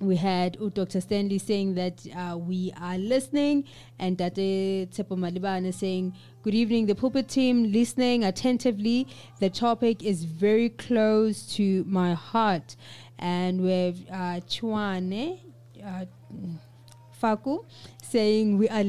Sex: female